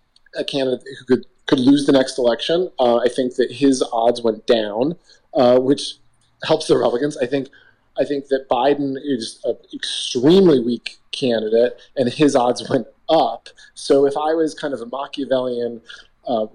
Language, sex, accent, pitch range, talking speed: English, male, American, 120-140 Hz, 165 wpm